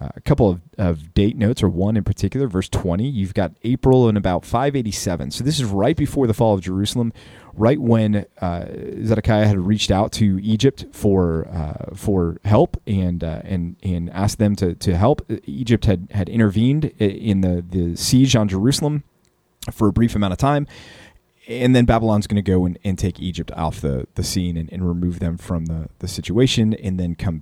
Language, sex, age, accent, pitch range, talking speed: English, male, 30-49, American, 90-110 Hz, 205 wpm